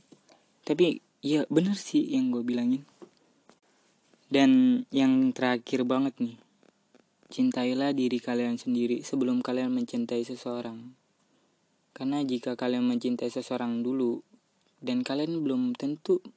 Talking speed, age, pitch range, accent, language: 110 wpm, 20-39, 125-185 Hz, native, Indonesian